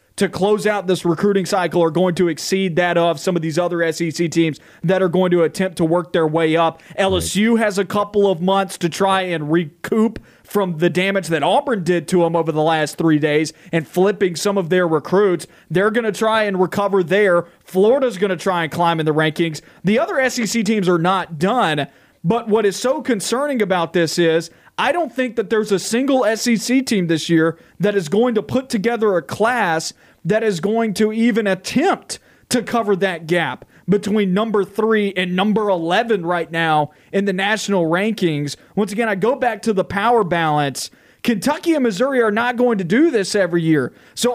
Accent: American